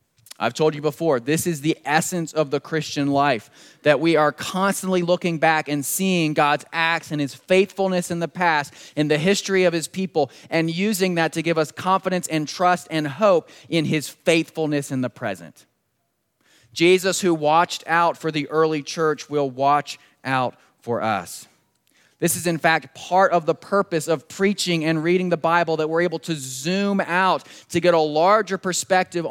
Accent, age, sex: American, 30-49, male